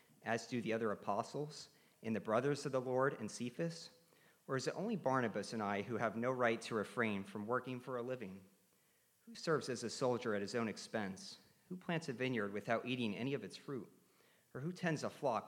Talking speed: 215 wpm